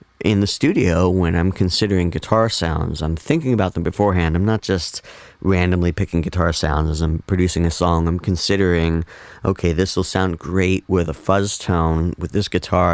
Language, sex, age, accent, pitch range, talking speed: English, male, 30-49, American, 80-95 Hz, 180 wpm